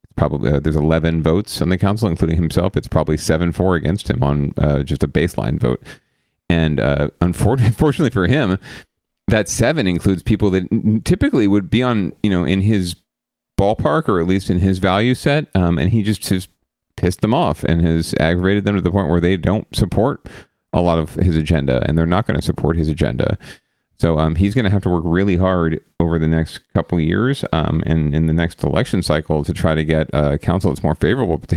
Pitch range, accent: 80-95 Hz, American